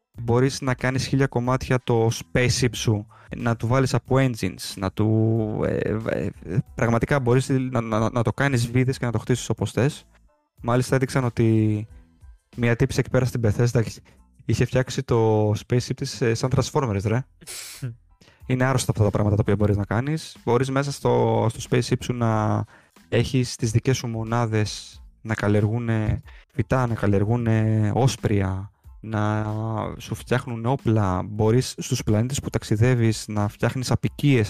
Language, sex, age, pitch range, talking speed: Greek, male, 20-39, 110-130 Hz, 155 wpm